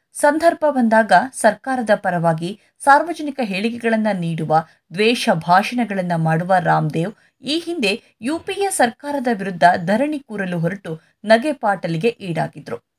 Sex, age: female, 20-39